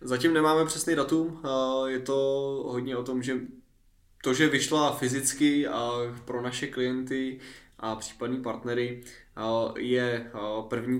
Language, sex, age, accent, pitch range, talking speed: Czech, male, 20-39, native, 110-125 Hz, 120 wpm